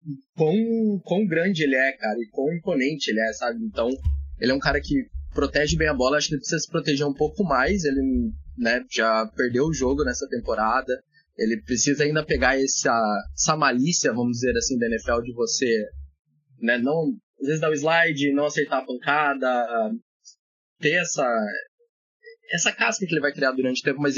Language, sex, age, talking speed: Portuguese, male, 20-39, 185 wpm